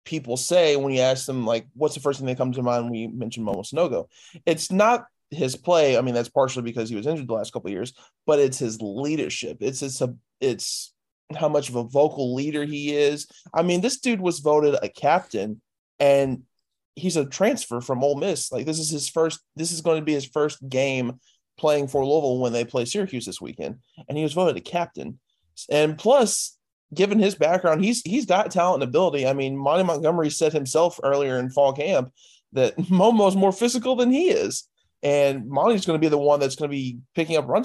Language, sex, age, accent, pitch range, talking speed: English, male, 20-39, American, 125-155 Hz, 220 wpm